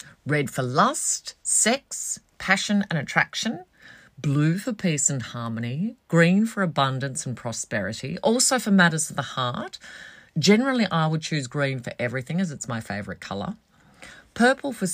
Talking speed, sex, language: 150 wpm, female, English